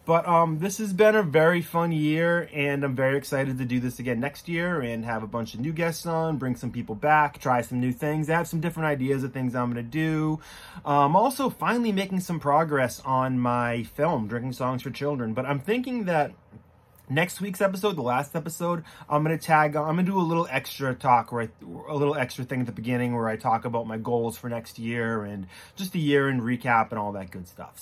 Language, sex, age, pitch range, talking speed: English, male, 30-49, 130-160 Hz, 235 wpm